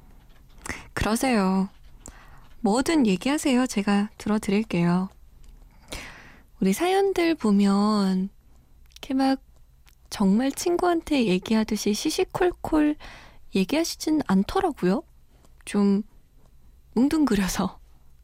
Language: Korean